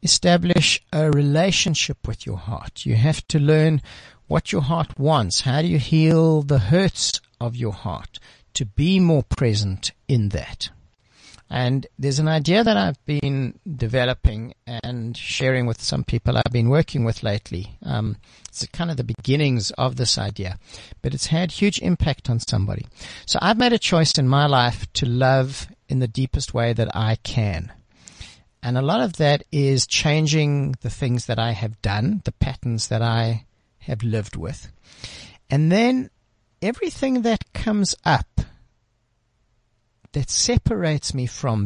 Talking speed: 160 wpm